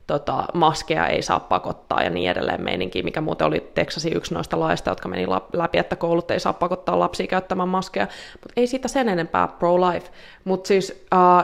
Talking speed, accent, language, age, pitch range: 190 wpm, native, Finnish, 20-39, 165-185 Hz